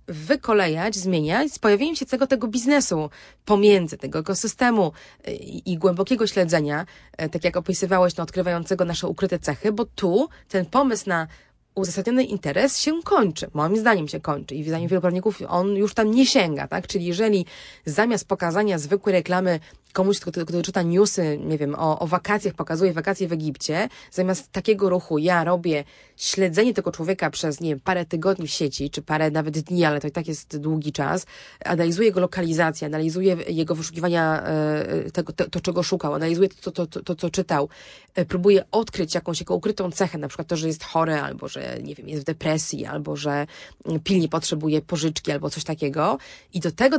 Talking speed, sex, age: 185 wpm, female, 20-39